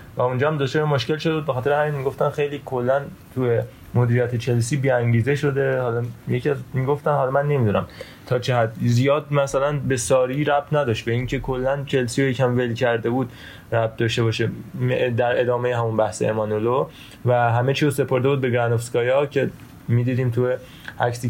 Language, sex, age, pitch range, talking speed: Persian, male, 20-39, 120-140 Hz, 170 wpm